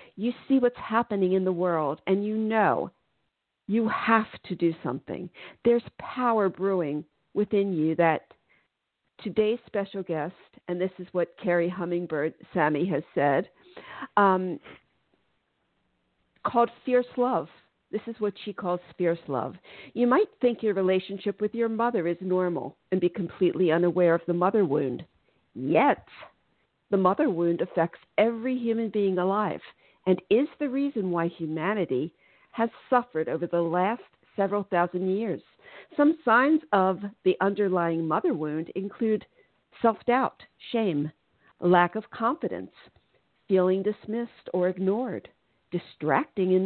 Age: 50-69